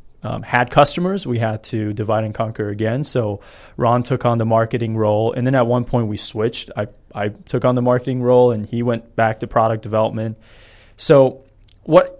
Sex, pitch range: male, 105-125 Hz